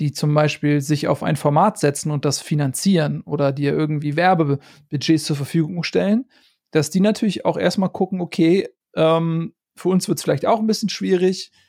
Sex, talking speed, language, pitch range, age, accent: male, 185 wpm, German, 150-185 Hz, 40-59, German